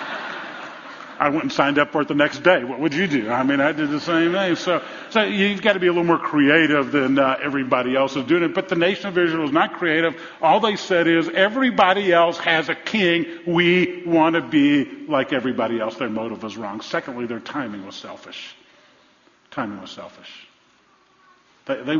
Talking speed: 205 wpm